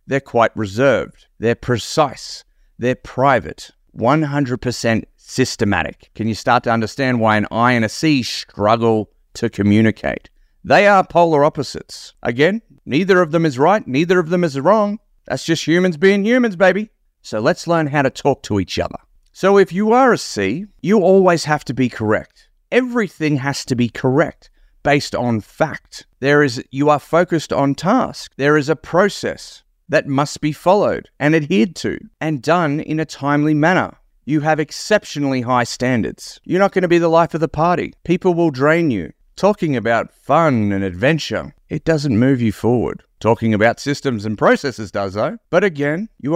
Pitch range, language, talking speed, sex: 120-170 Hz, English, 175 wpm, male